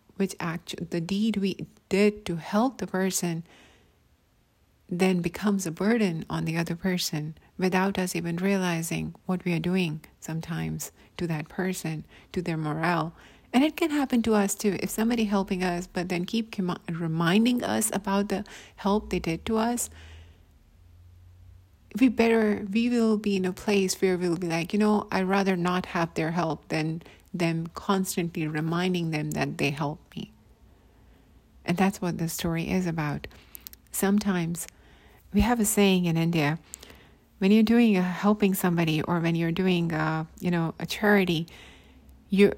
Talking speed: 160 wpm